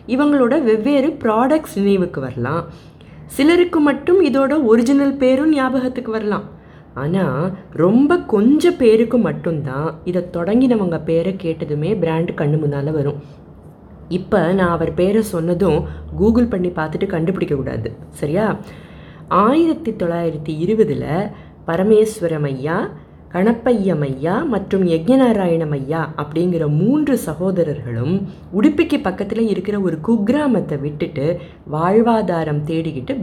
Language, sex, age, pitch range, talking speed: Tamil, female, 20-39, 160-240 Hz, 105 wpm